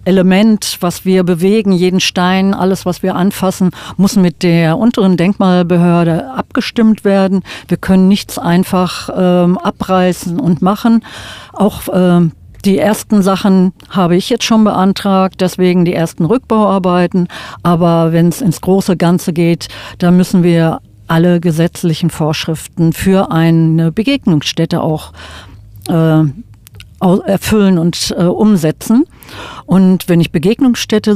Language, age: German, 50-69